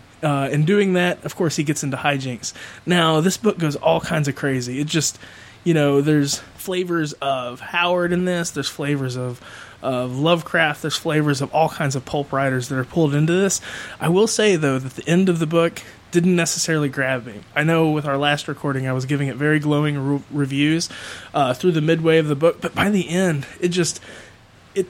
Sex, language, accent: male, English, American